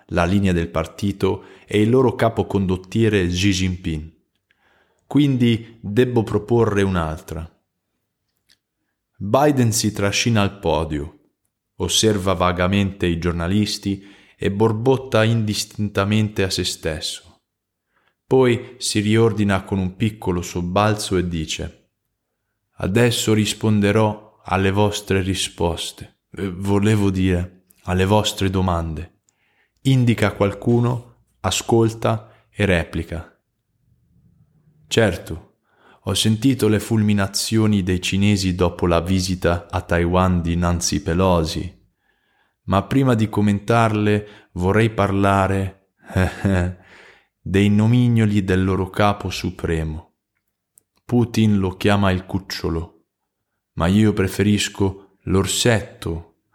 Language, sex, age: Italian, male, 20-39